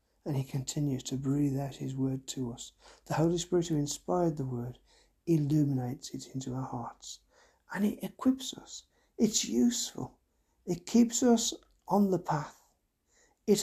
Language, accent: English, British